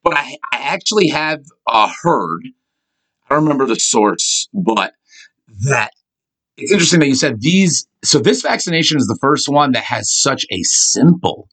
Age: 30-49